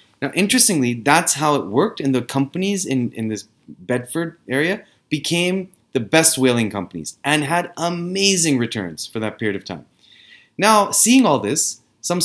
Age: 30-49